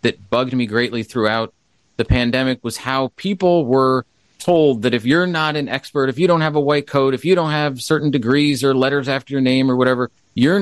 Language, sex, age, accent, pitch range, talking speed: English, male, 30-49, American, 110-145 Hz, 220 wpm